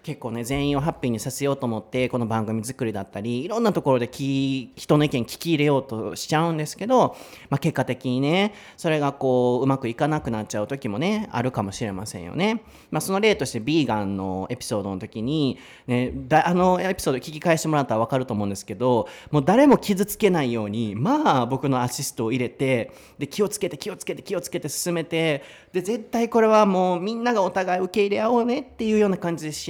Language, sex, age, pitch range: Japanese, male, 30-49, 120-175 Hz